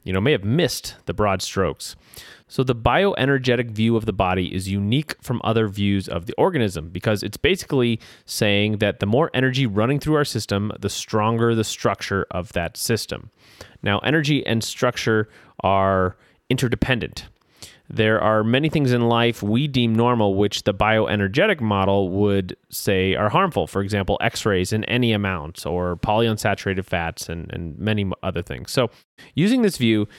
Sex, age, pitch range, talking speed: male, 30-49, 100-125 Hz, 165 wpm